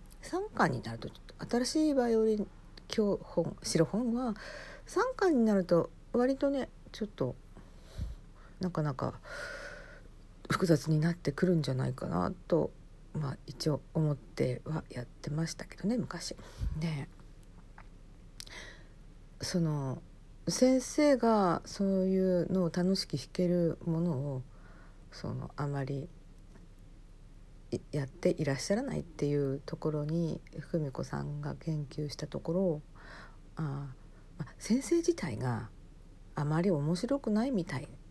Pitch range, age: 140-200 Hz, 50-69